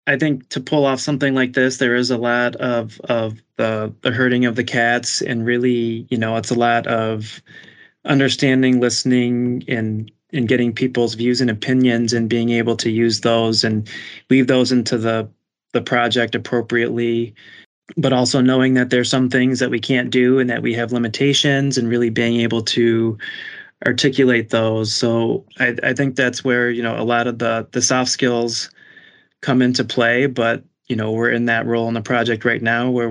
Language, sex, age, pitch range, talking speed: English, male, 20-39, 115-125 Hz, 190 wpm